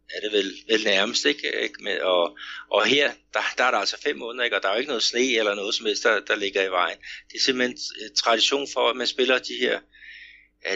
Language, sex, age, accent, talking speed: Danish, male, 60-79, native, 255 wpm